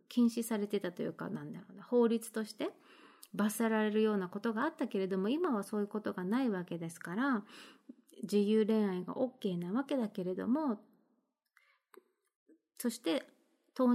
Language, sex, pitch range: Japanese, female, 195-270 Hz